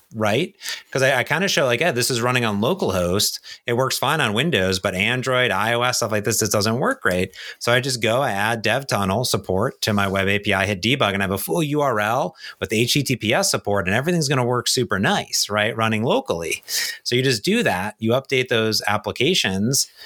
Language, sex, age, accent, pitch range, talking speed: English, male, 30-49, American, 100-125 Hz, 220 wpm